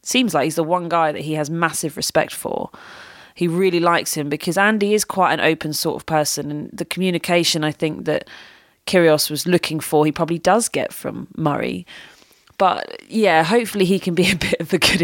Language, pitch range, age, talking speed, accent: English, 155-200 Hz, 30-49, 210 wpm, British